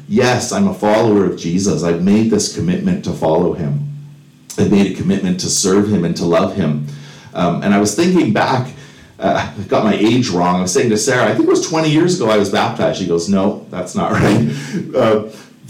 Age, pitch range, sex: 40-59, 90-135 Hz, male